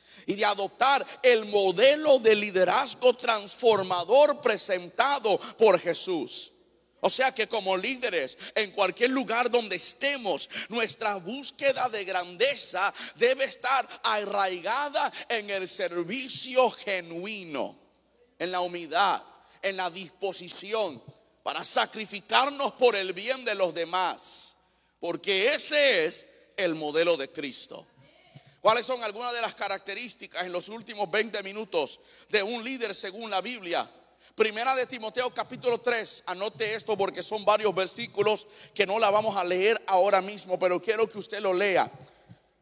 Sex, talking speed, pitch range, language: male, 135 wpm, 185-245 Hz, Spanish